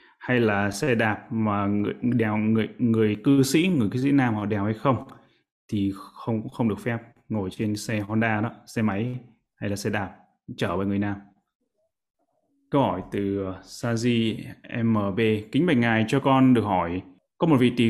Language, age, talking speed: Vietnamese, 20-39, 185 wpm